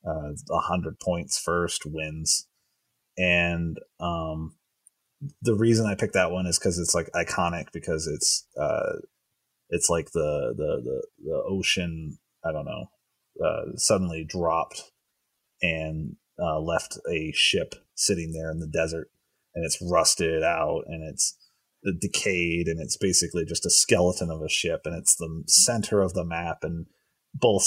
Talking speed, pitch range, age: 150 wpm, 85-100 Hz, 30-49